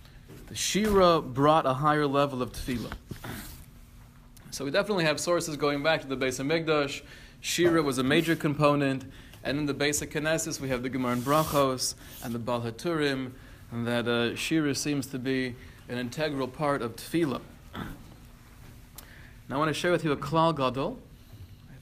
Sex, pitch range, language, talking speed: male, 120-150 Hz, English, 175 wpm